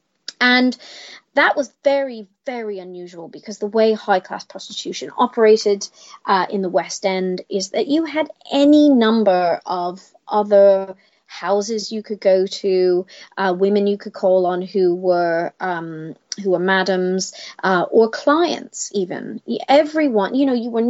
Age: 30-49